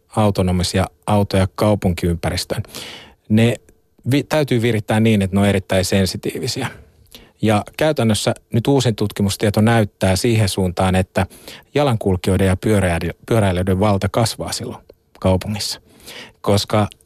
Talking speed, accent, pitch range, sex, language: 105 wpm, native, 95-115 Hz, male, Finnish